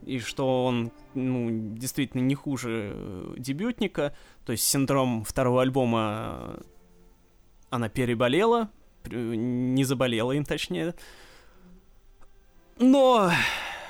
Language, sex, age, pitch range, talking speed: Russian, male, 20-39, 120-150 Hz, 85 wpm